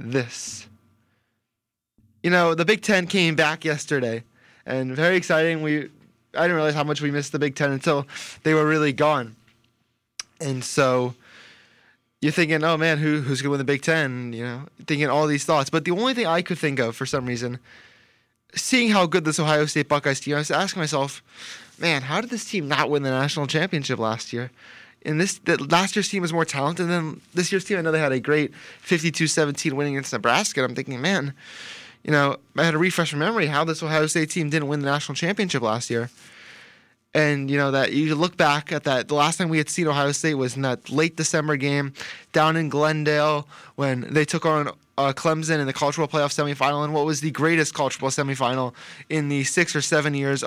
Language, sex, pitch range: English, male, 135-160 Hz